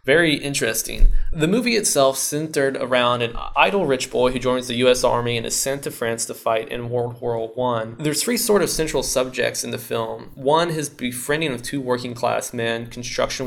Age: 20-39